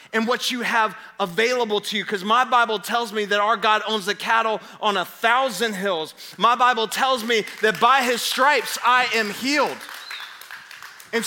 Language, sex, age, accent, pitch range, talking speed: English, male, 20-39, American, 210-265 Hz, 180 wpm